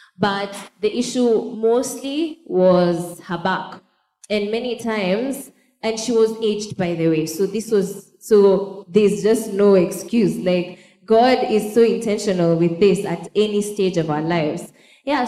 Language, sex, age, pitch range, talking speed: English, female, 20-39, 180-220 Hz, 155 wpm